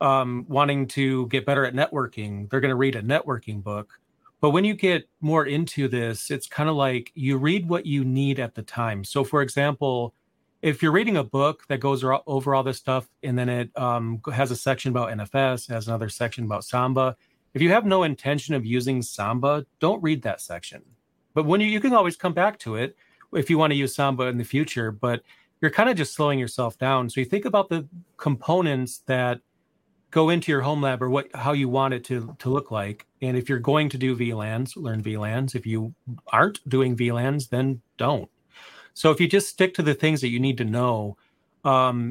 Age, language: 30-49, English